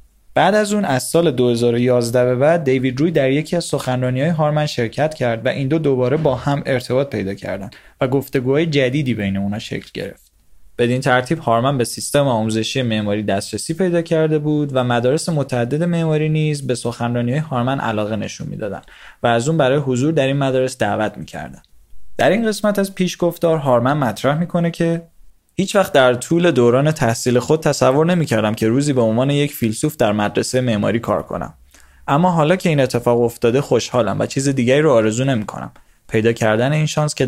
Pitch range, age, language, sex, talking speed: 115-150 Hz, 20-39, Persian, male, 185 wpm